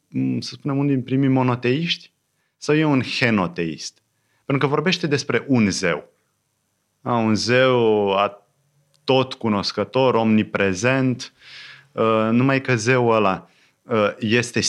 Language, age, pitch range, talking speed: Romanian, 30-49, 95-130 Hz, 115 wpm